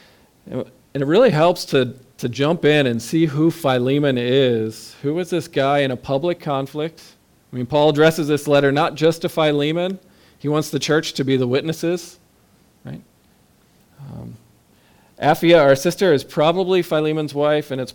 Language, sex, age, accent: English, male, 40-59, American